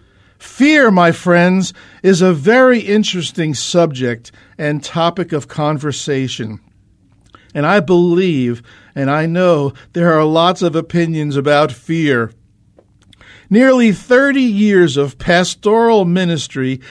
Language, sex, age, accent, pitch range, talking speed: English, male, 50-69, American, 130-195 Hz, 110 wpm